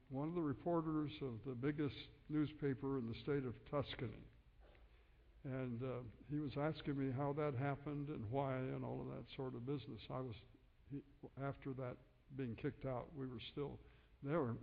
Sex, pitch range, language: male, 120-150 Hz, English